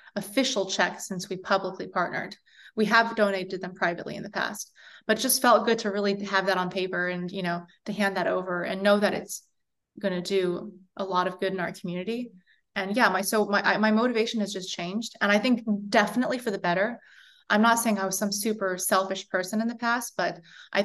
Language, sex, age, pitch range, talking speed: English, female, 20-39, 185-215 Hz, 220 wpm